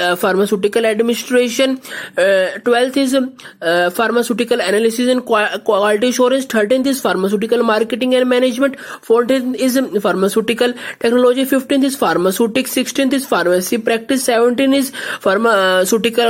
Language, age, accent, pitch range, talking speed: English, 20-39, Indian, 205-250 Hz, 120 wpm